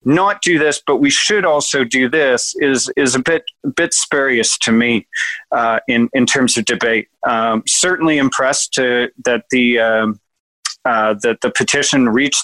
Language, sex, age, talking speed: English, male, 40-59, 175 wpm